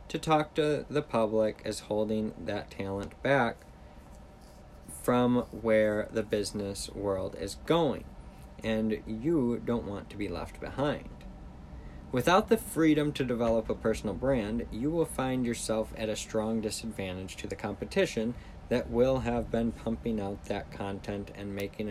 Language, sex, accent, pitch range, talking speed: English, male, American, 100-125 Hz, 150 wpm